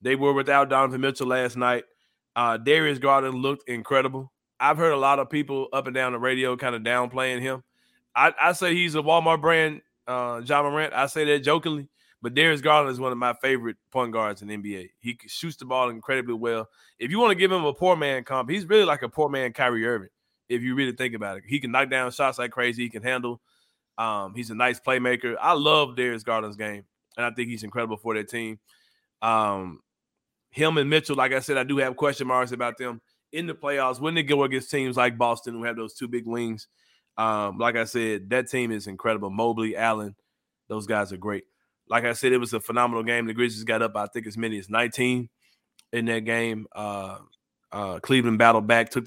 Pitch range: 115-135 Hz